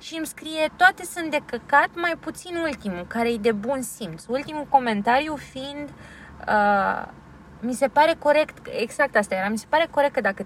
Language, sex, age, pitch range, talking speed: Romanian, female, 20-39, 220-295 Hz, 180 wpm